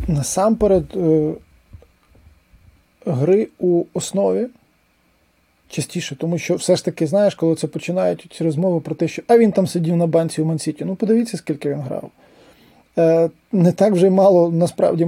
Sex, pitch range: male, 165-200 Hz